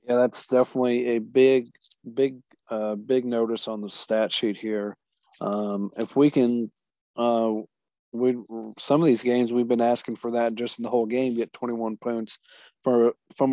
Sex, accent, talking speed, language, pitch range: male, American, 175 wpm, English, 110-125 Hz